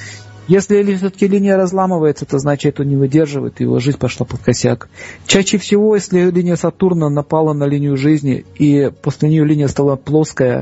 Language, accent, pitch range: Russian, native, 130-165 Hz